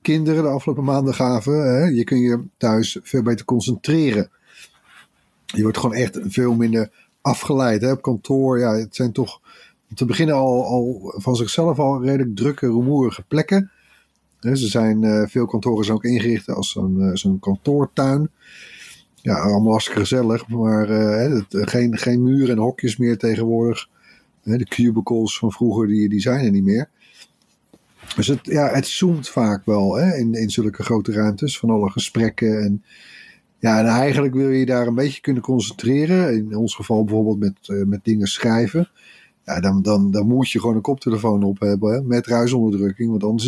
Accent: Dutch